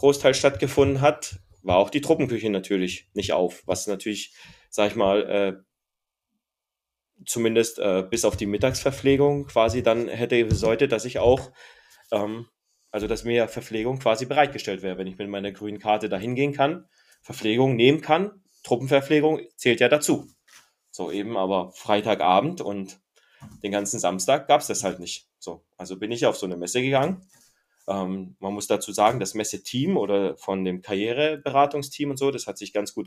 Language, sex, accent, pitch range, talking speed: German, male, German, 100-140 Hz, 165 wpm